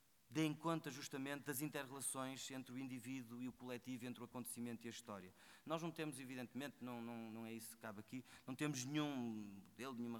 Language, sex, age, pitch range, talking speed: Portuguese, male, 20-39, 125-150 Hz, 200 wpm